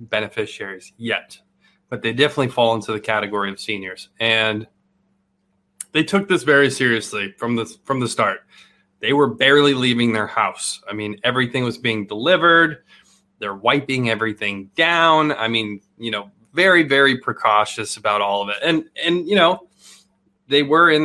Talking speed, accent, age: 160 wpm, American, 20-39